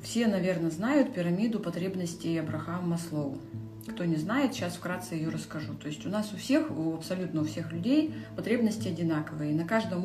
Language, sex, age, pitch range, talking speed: Russian, female, 30-49, 140-195 Hz, 180 wpm